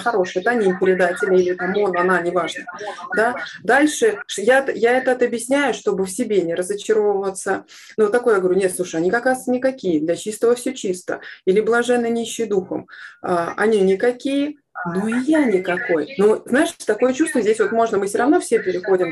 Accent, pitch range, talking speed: native, 185-250 Hz, 180 wpm